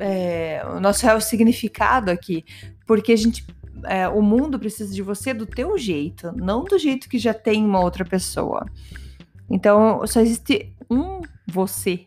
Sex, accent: female, Brazilian